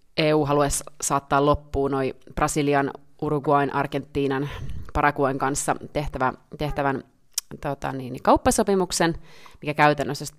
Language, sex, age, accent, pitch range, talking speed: Finnish, female, 30-49, native, 140-155 Hz, 90 wpm